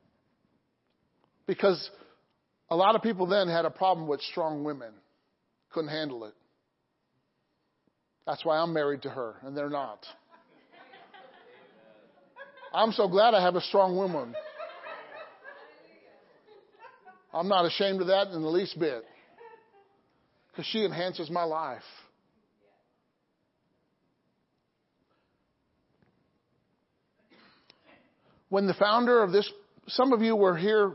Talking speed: 110 wpm